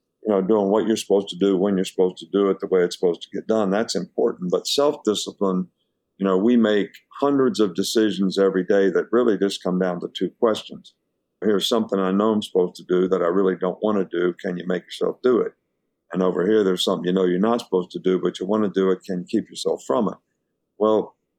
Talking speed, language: 245 wpm, English